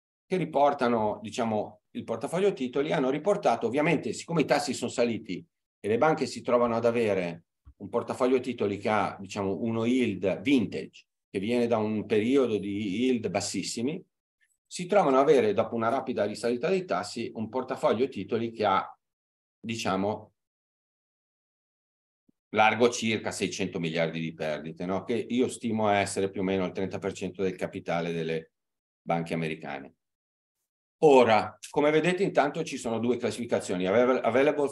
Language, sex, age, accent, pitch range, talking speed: Italian, male, 40-59, native, 90-120 Hz, 145 wpm